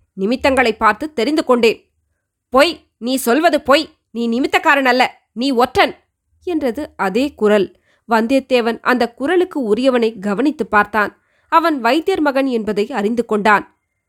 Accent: native